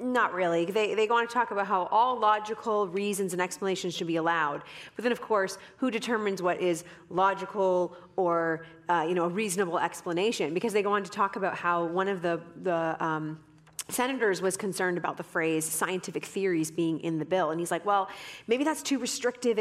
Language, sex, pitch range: English, female, 165-205 Hz